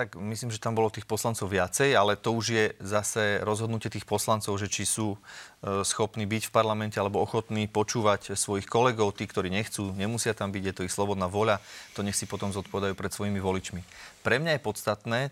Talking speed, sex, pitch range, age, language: 205 wpm, male, 105-125 Hz, 30-49, Slovak